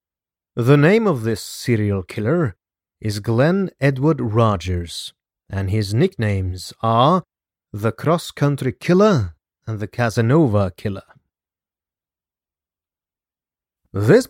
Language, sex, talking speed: English, male, 90 wpm